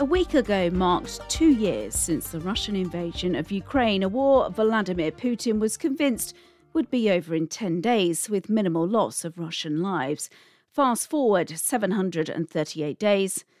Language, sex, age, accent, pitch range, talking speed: English, female, 40-59, British, 170-230 Hz, 150 wpm